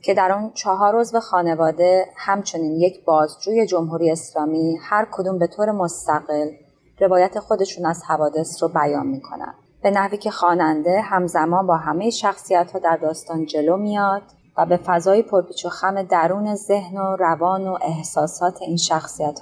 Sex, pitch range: female, 160-190 Hz